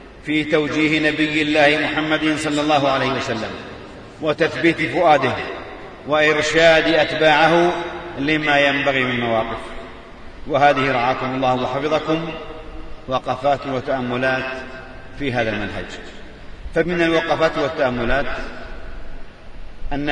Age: 40-59